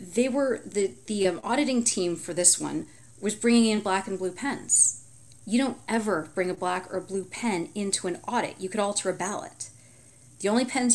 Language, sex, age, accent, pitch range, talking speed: English, female, 30-49, American, 165-210 Hz, 195 wpm